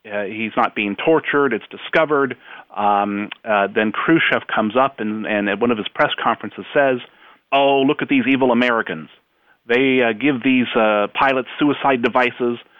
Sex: male